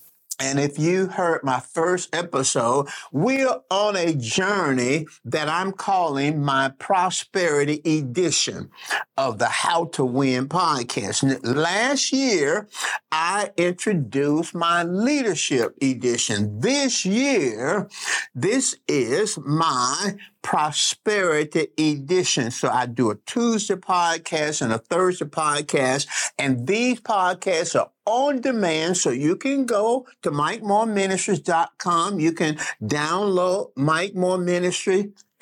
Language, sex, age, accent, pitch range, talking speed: English, male, 50-69, American, 145-195 Hz, 115 wpm